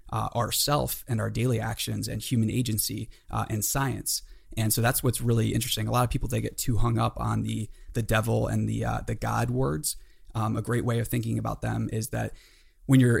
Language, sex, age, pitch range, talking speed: English, male, 20-39, 110-125 Hz, 225 wpm